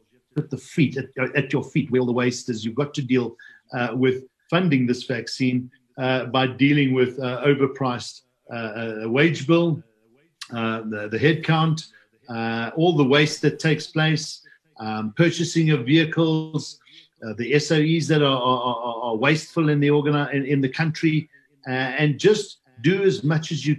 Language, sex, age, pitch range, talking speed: English, male, 50-69, 120-155 Hz, 170 wpm